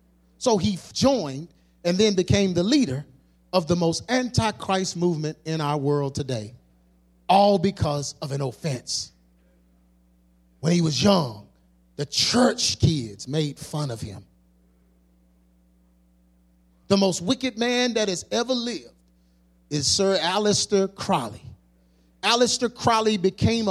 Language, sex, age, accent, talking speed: English, male, 40-59, American, 120 wpm